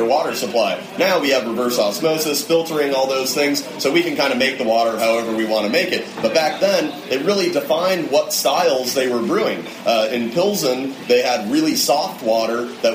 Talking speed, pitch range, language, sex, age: 210 wpm, 115-150 Hz, English, male, 30-49